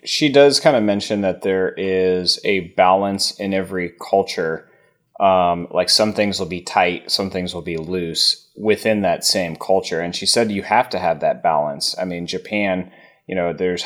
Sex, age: male, 30-49